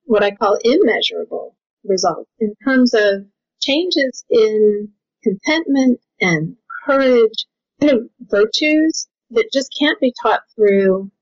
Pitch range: 200-300 Hz